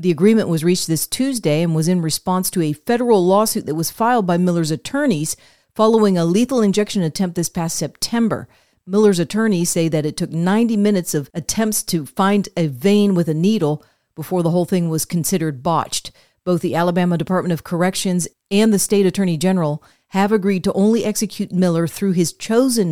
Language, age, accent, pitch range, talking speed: English, 40-59, American, 170-210 Hz, 190 wpm